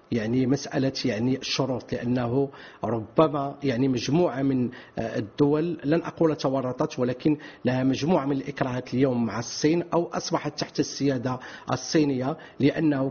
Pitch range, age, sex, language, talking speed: 135-165 Hz, 40-59, male, English, 125 wpm